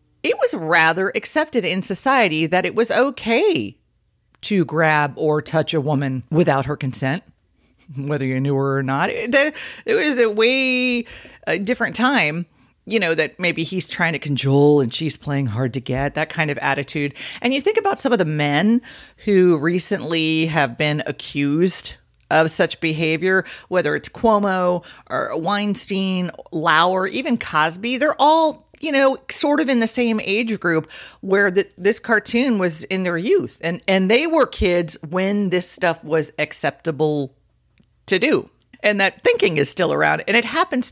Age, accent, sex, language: 40-59, American, female, English